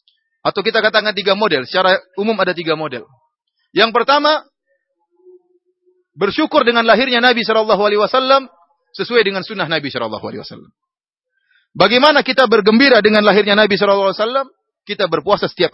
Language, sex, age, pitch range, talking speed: English, male, 30-49, 195-265 Hz, 120 wpm